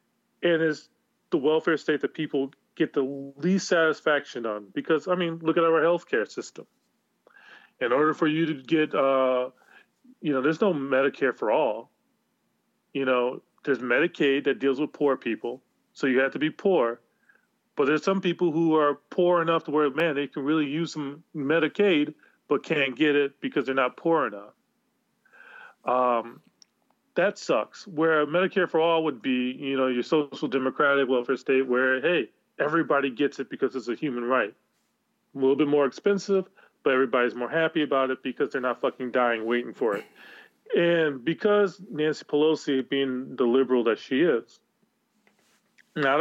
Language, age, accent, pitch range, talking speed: English, 30-49, American, 130-165 Hz, 170 wpm